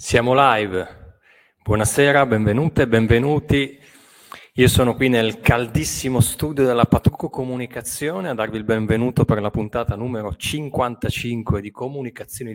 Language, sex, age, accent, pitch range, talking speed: Italian, male, 30-49, native, 100-130 Hz, 125 wpm